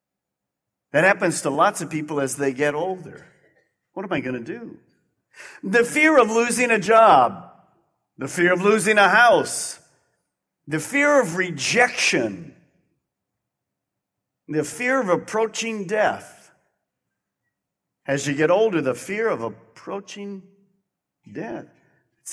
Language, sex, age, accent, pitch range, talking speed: English, male, 50-69, American, 165-220 Hz, 125 wpm